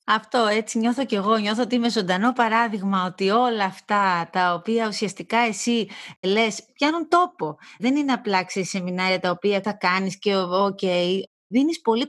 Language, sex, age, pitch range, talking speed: Greek, female, 30-49, 185-245 Hz, 170 wpm